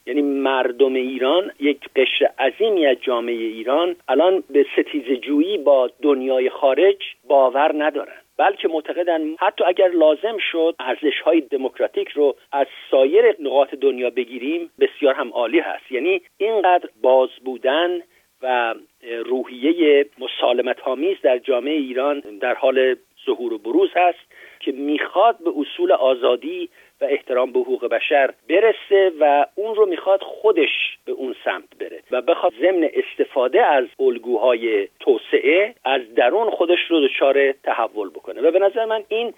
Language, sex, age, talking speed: Persian, male, 50-69, 140 wpm